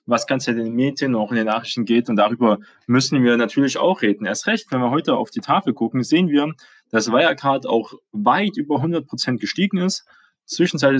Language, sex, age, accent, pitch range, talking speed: German, male, 20-39, German, 110-150 Hz, 205 wpm